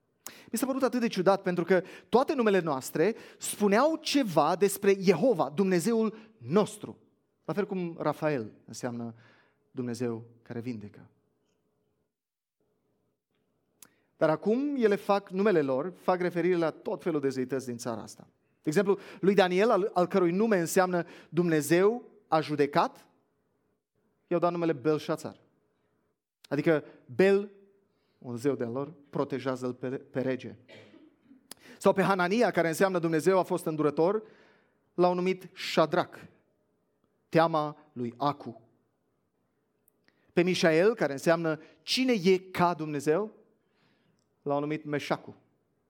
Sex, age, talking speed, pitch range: male, 30-49, 120 wpm, 135-195 Hz